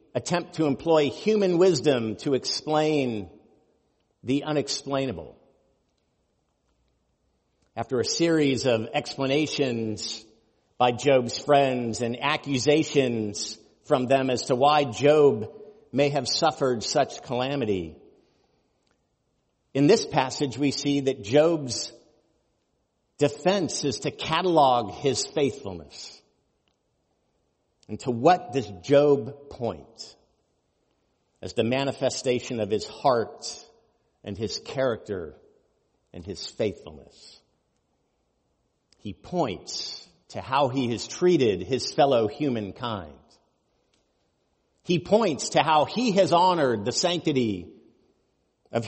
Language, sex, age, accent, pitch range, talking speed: English, male, 50-69, American, 120-155 Hz, 100 wpm